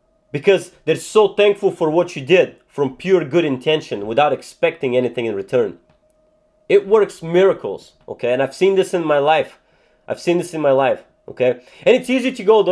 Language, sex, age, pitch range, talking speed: English, male, 30-49, 140-210 Hz, 195 wpm